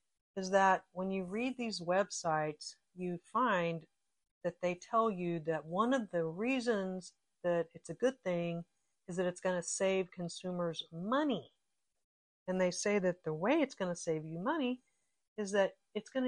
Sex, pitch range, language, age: female, 170-235 Hz, English, 50-69